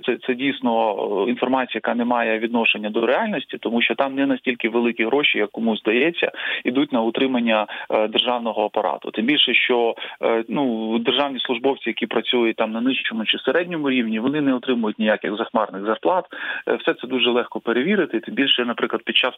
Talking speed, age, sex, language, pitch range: 170 wpm, 20-39, male, Ukrainian, 110-130 Hz